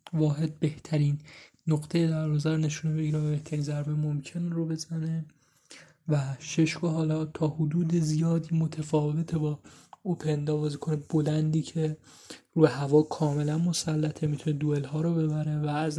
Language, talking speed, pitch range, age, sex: Persian, 145 wpm, 150-165 Hz, 20-39, male